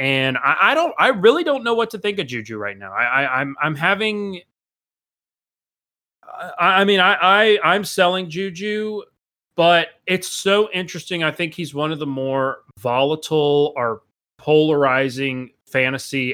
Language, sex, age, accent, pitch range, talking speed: English, male, 30-49, American, 120-160 Hz, 150 wpm